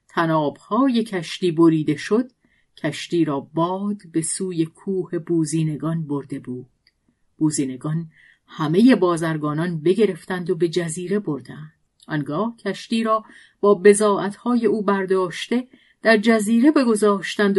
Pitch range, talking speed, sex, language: 160-210 Hz, 105 wpm, female, Persian